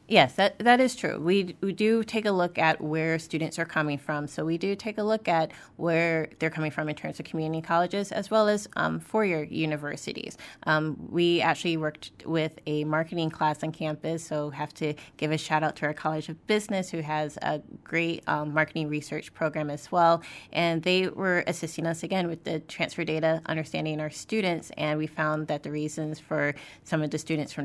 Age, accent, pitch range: 20-39, American, 155-175 Hz